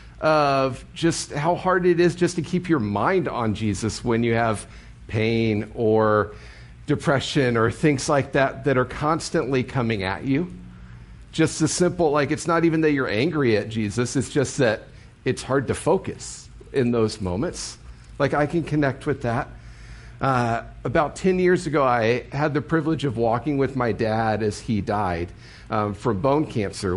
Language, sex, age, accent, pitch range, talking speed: English, male, 50-69, American, 110-145 Hz, 175 wpm